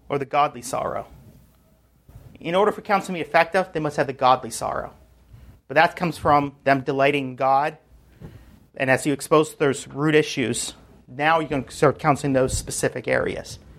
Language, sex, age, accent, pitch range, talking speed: English, male, 40-59, American, 125-160 Hz, 175 wpm